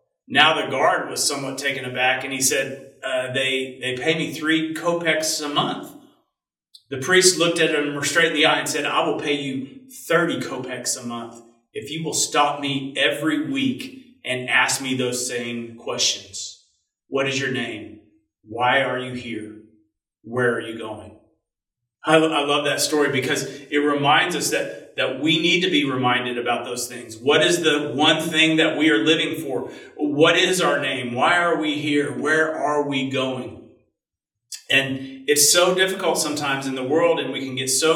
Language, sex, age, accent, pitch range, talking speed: English, male, 40-59, American, 130-160 Hz, 185 wpm